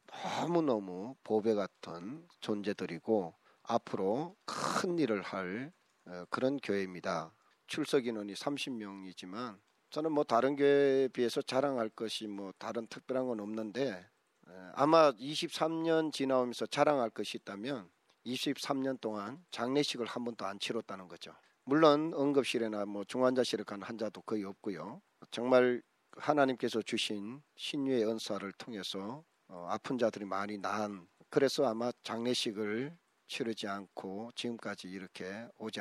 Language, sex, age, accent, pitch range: Korean, male, 40-59, native, 105-140 Hz